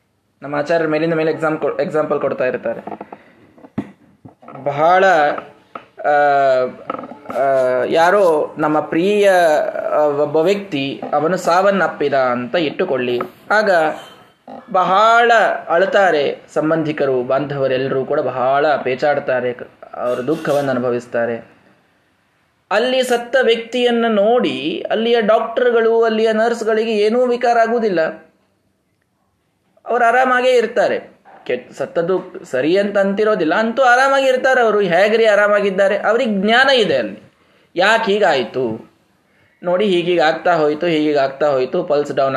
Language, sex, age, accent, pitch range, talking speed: Kannada, male, 20-39, native, 150-230 Hz, 100 wpm